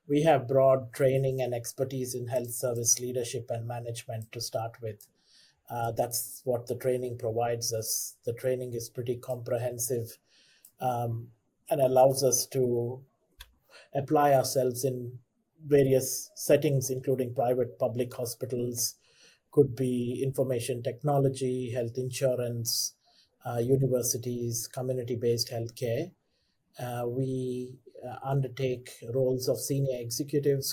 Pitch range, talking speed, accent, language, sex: 120-135 Hz, 115 wpm, Indian, English, male